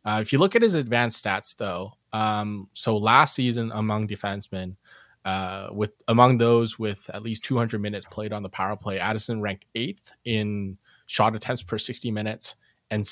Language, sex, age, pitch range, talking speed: English, male, 20-39, 100-120 Hz, 180 wpm